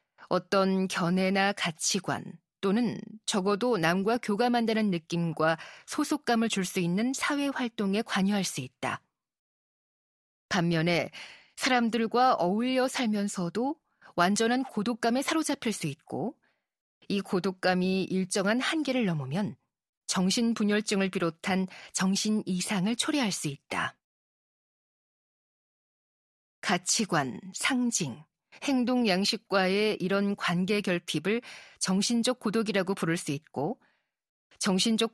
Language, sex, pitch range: Korean, female, 185-235 Hz